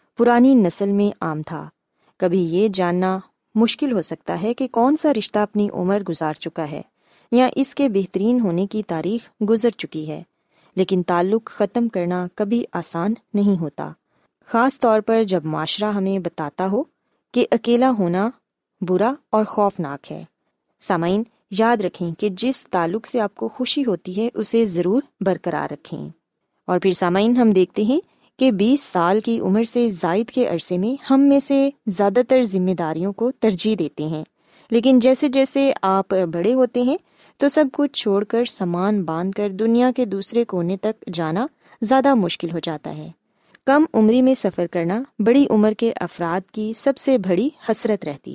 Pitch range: 180-240 Hz